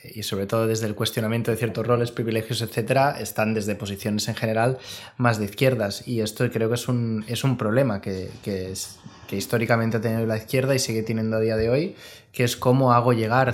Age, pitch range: 20-39, 110-130 Hz